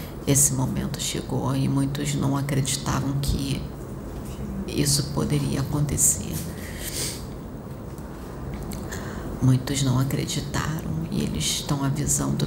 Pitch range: 135-160 Hz